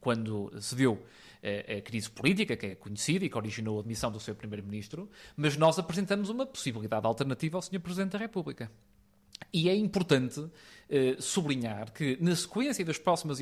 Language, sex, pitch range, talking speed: Portuguese, male, 120-175 Hz, 165 wpm